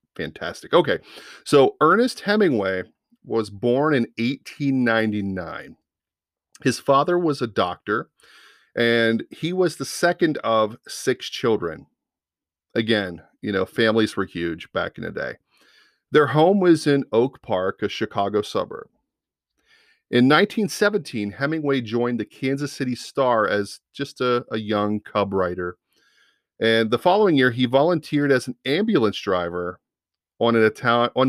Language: English